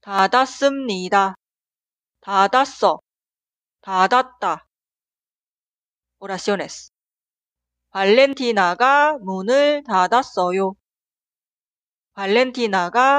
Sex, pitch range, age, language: female, 190-275 Hz, 30-49, Korean